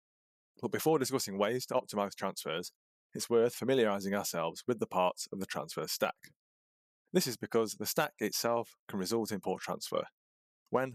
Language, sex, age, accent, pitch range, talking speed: English, male, 20-39, British, 95-130 Hz, 165 wpm